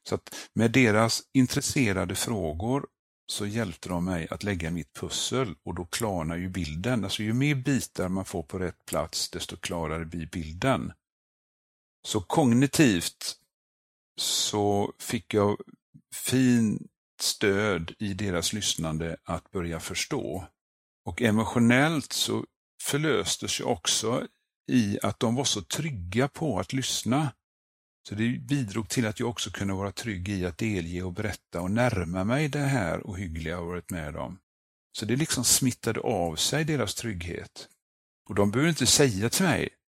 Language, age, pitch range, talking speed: English, 50-69, 85-120 Hz, 150 wpm